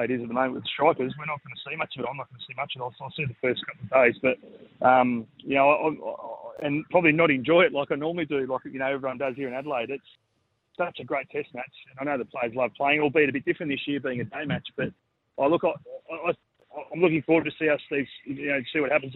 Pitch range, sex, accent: 125-145 Hz, male, Australian